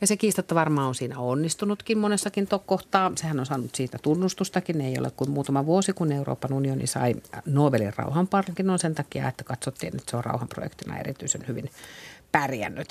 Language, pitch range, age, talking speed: Finnish, 135-185 Hz, 50-69, 165 wpm